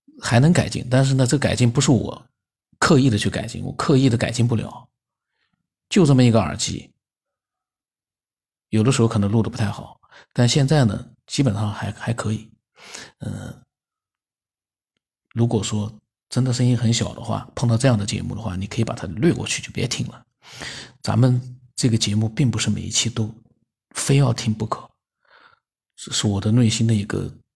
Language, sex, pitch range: Chinese, male, 115-150 Hz